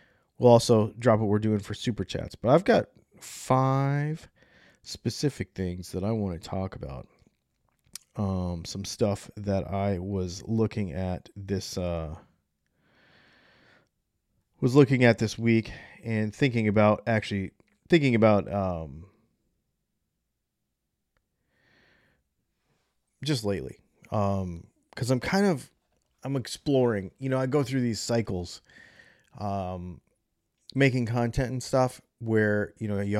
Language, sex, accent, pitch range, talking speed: English, male, American, 100-130 Hz, 120 wpm